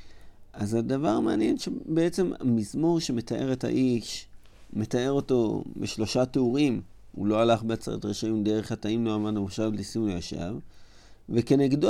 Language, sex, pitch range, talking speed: Hebrew, male, 100-145 Hz, 125 wpm